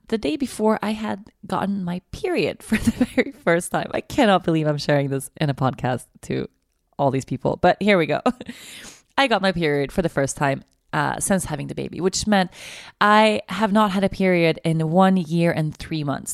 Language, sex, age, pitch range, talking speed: English, female, 20-39, 160-215 Hz, 210 wpm